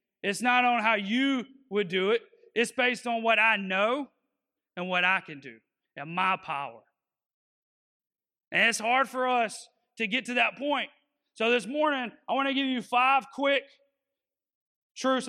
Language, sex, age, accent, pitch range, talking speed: English, male, 30-49, American, 205-275 Hz, 170 wpm